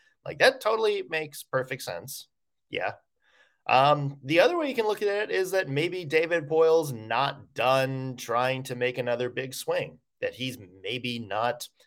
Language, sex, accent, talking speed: English, male, American, 165 wpm